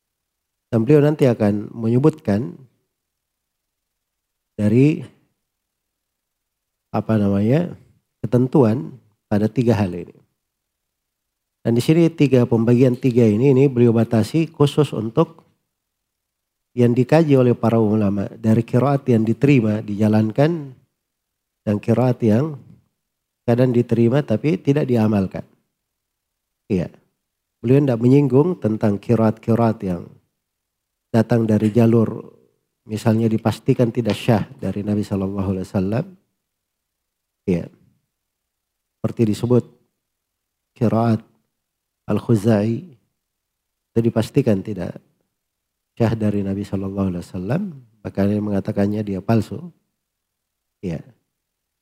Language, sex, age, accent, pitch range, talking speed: Indonesian, male, 40-59, native, 105-125 Hz, 95 wpm